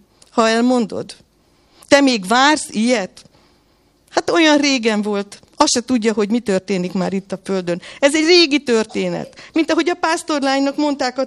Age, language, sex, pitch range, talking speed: 50-69, Hungarian, female, 195-270 Hz, 160 wpm